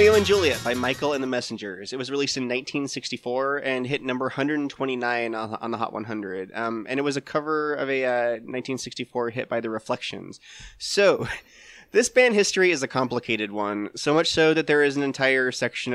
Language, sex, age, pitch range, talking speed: English, male, 20-39, 115-145 Hz, 190 wpm